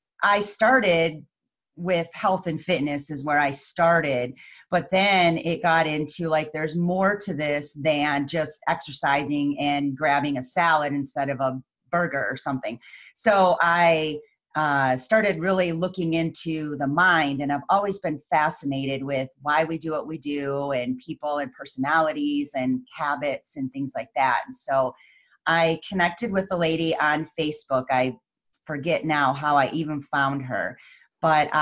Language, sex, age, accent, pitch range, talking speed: English, female, 30-49, American, 140-165 Hz, 155 wpm